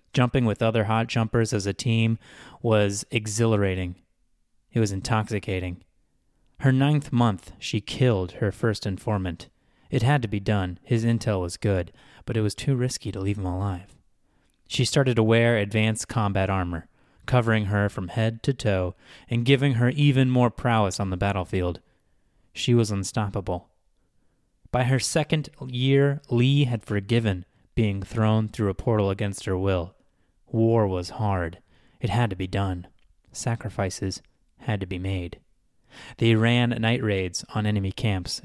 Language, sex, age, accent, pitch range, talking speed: English, male, 20-39, American, 95-120 Hz, 155 wpm